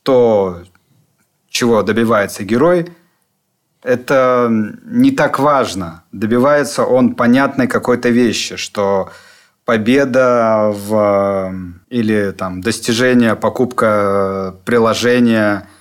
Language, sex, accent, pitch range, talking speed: Russian, male, native, 105-130 Hz, 70 wpm